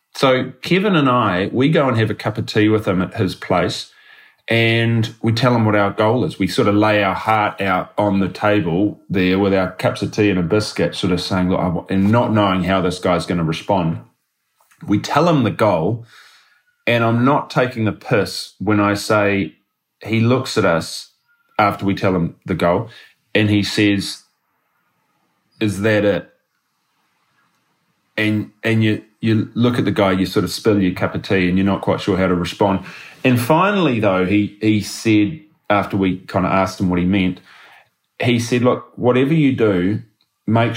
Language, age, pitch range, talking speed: English, 30-49, 95-115 Hz, 195 wpm